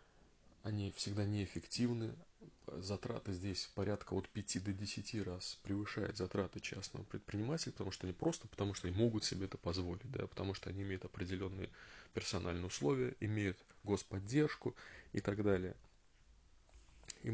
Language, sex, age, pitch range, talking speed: Russian, male, 20-39, 90-105 Hz, 140 wpm